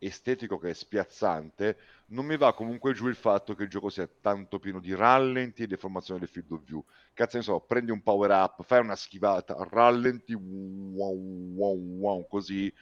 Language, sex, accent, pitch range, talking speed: Italian, male, native, 90-120 Hz, 185 wpm